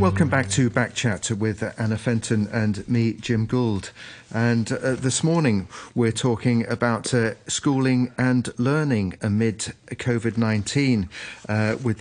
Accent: British